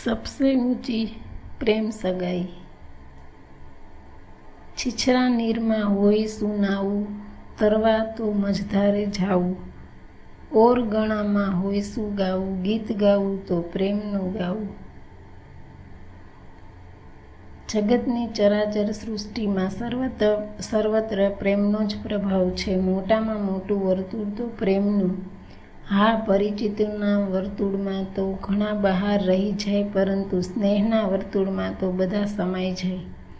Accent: native